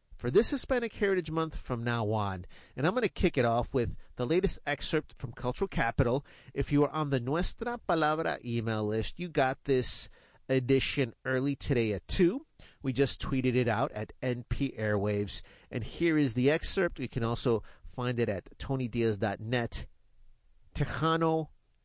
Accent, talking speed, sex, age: American, 165 wpm, male, 40-59